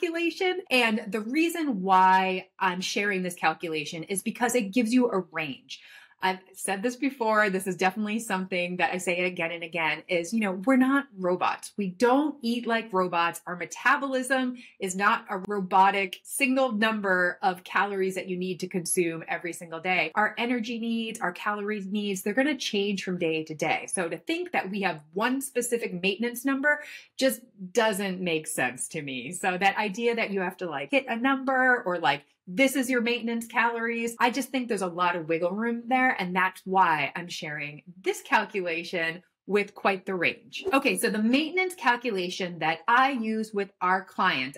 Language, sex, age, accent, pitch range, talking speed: English, female, 30-49, American, 180-245 Hz, 185 wpm